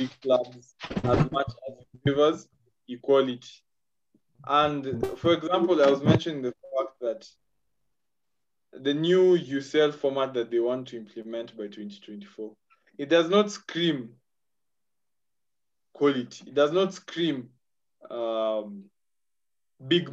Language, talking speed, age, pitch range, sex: English, 115 wpm, 20-39, 125-155 Hz, male